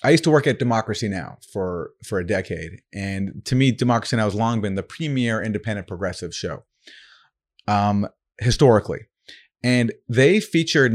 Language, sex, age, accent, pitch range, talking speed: English, male, 30-49, American, 105-135 Hz, 160 wpm